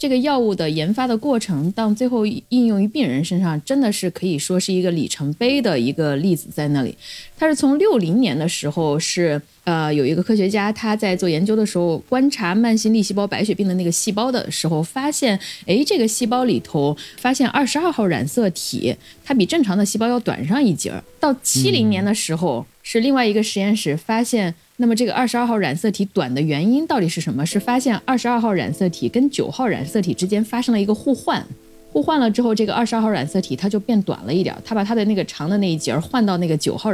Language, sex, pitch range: Chinese, female, 175-245 Hz